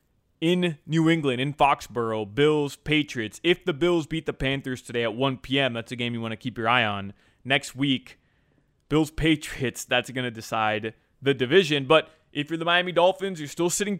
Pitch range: 120-160 Hz